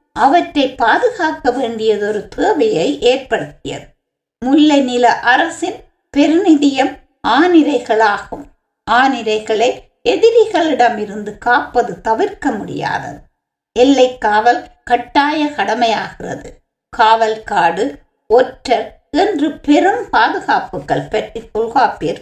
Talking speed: 65 wpm